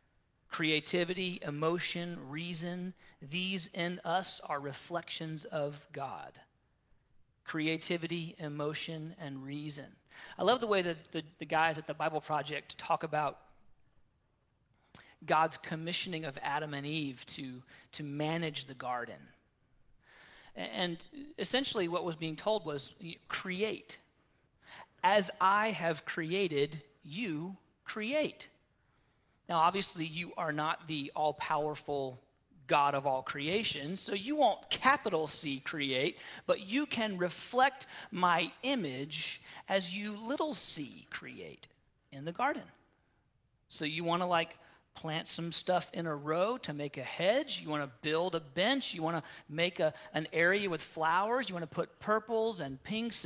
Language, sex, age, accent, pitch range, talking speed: English, male, 40-59, American, 150-195 Hz, 135 wpm